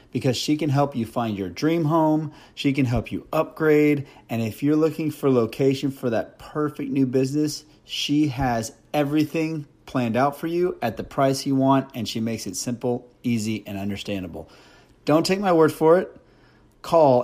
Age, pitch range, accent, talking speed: 30-49, 120-145 Hz, American, 180 wpm